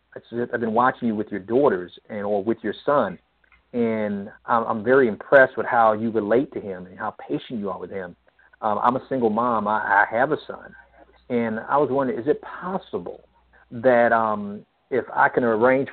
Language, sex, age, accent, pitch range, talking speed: English, male, 50-69, American, 105-130 Hz, 195 wpm